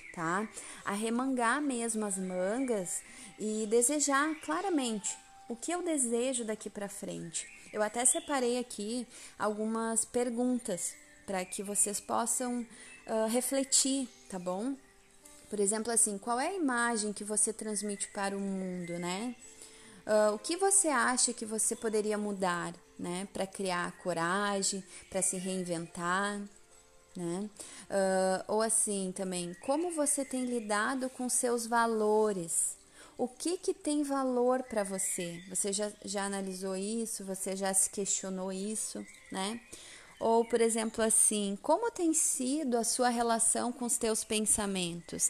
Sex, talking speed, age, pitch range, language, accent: female, 135 wpm, 20-39, 190-245 Hz, Portuguese, Brazilian